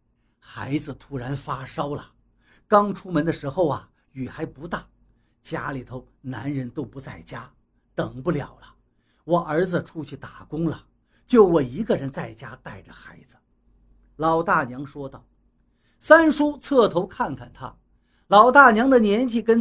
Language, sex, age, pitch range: Chinese, male, 50-69, 140-225 Hz